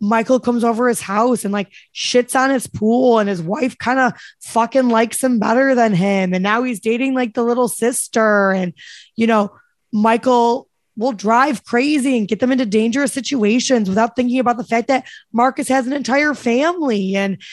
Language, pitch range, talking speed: English, 225-270 Hz, 190 wpm